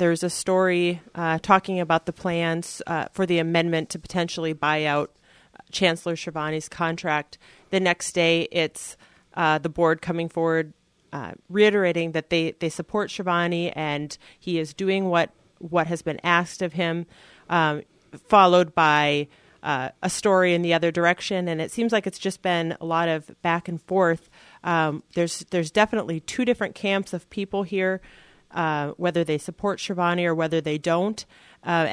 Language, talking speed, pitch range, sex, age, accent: English, 170 wpm, 165-185 Hz, female, 40-59, American